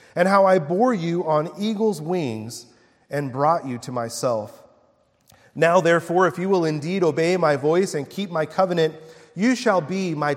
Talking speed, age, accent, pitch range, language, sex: 175 wpm, 30-49, American, 130-175 Hz, English, male